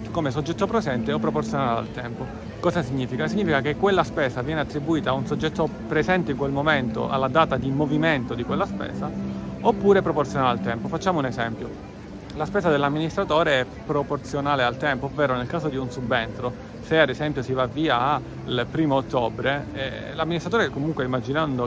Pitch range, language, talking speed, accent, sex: 125-160 Hz, Italian, 170 wpm, native, male